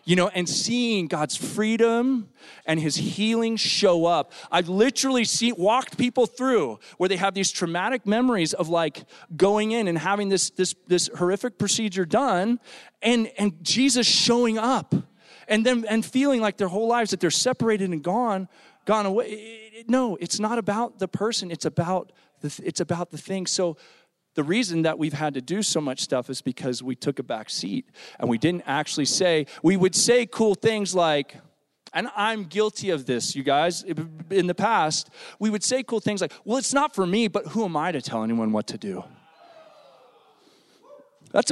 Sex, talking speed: male, 185 wpm